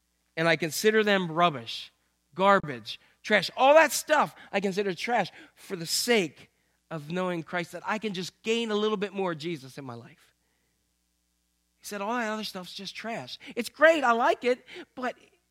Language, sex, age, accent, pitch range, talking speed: English, male, 40-59, American, 155-220 Hz, 180 wpm